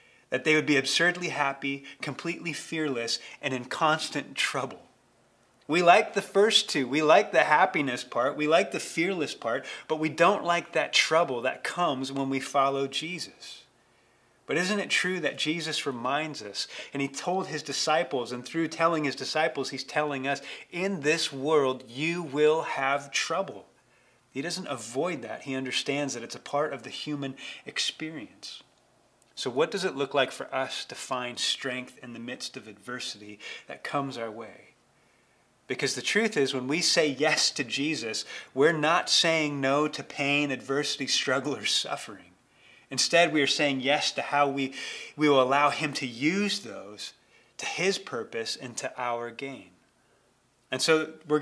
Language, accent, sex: English, American, male